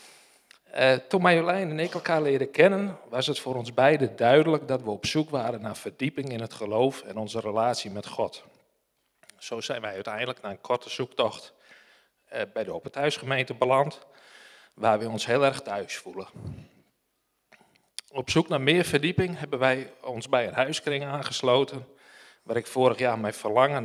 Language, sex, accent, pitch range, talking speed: Dutch, male, Dutch, 125-155 Hz, 165 wpm